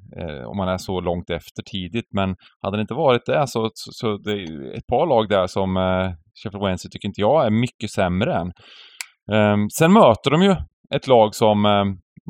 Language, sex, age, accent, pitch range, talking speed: Swedish, male, 30-49, native, 95-125 Hz, 205 wpm